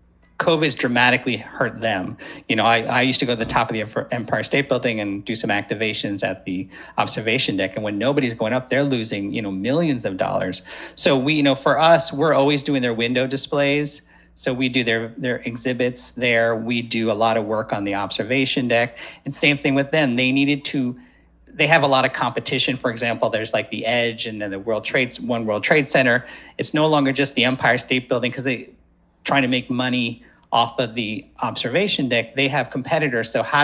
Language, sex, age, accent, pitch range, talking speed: English, male, 40-59, American, 120-140 Hz, 220 wpm